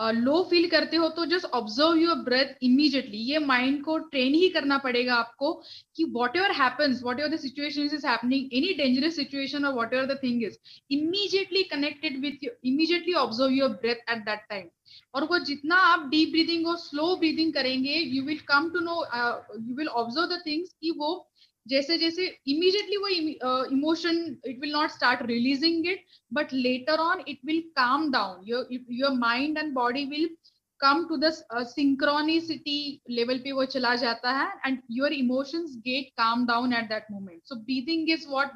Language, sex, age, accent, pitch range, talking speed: English, female, 20-39, Indian, 250-320 Hz, 170 wpm